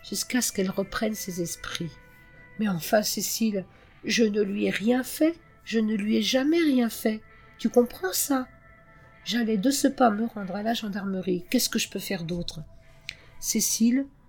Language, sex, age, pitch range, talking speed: French, female, 50-69, 175-225 Hz, 170 wpm